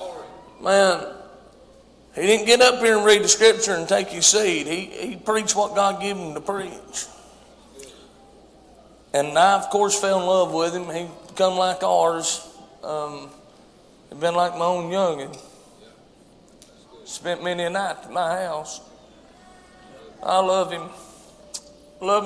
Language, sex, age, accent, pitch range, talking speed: English, male, 40-59, American, 185-225 Hz, 140 wpm